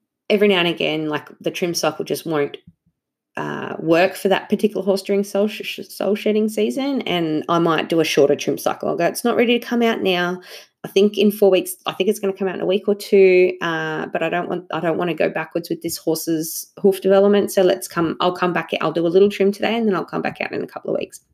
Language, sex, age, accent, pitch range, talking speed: English, female, 20-39, Australian, 170-210 Hz, 265 wpm